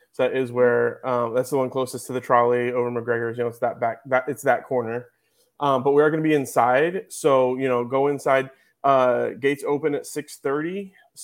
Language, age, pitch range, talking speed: English, 20-39, 120-135 Hz, 210 wpm